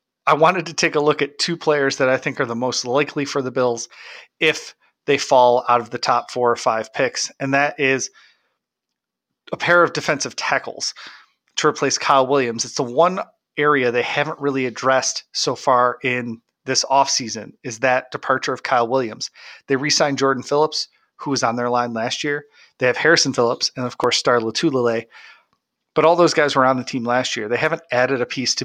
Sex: male